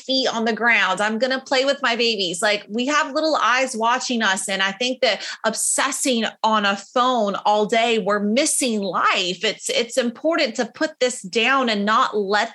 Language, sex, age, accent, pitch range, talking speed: English, female, 30-49, American, 200-255 Hz, 190 wpm